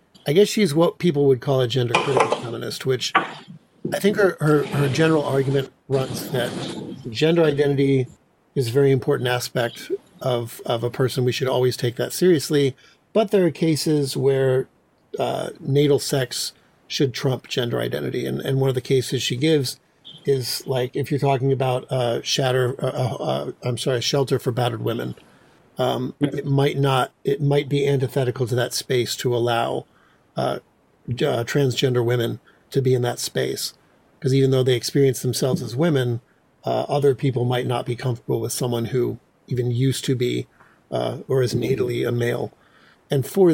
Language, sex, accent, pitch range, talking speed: English, male, American, 125-145 Hz, 175 wpm